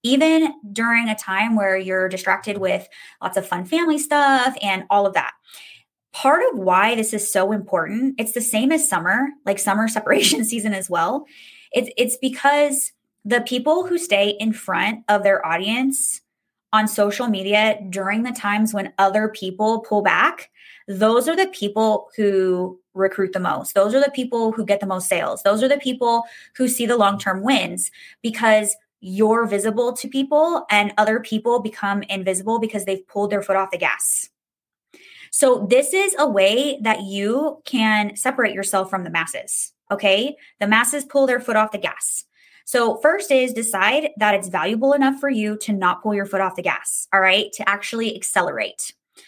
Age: 20-39